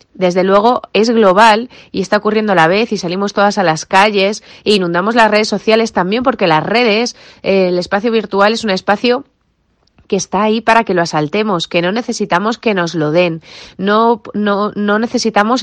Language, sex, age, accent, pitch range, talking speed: English, female, 30-49, Spanish, 175-215 Hz, 190 wpm